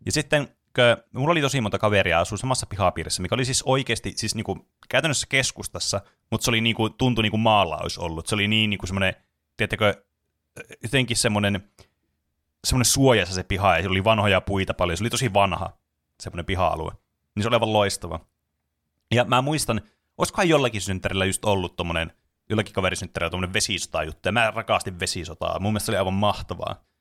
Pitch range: 95-125 Hz